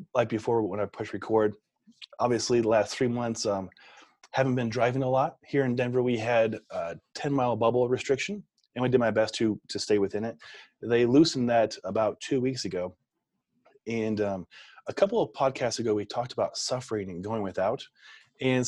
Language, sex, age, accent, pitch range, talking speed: English, male, 30-49, American, 105-130 Hz, 190 wpm